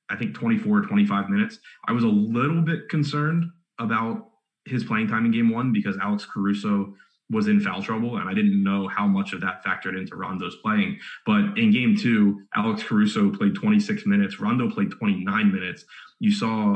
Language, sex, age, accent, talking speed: English, male, 20-39, American, 185 wpm